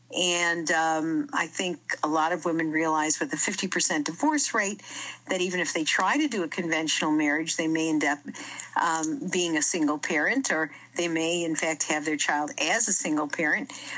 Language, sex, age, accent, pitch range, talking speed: English, female, 50-69, American, 160-200 Hz, 200 wpm